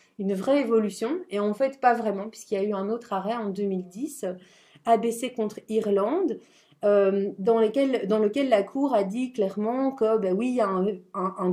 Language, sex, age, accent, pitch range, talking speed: French, female, 30-49, French, 190-235 Hz, 200 wpm